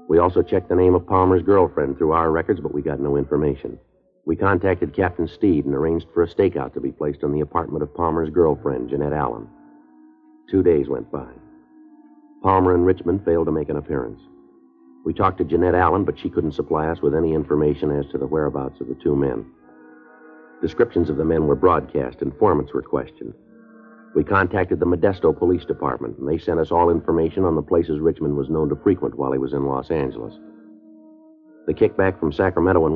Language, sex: English, male